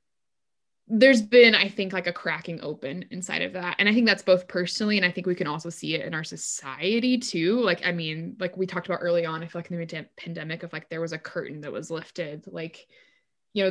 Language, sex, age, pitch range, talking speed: English, female, 20-39, 165-190 Hz, 245 wpm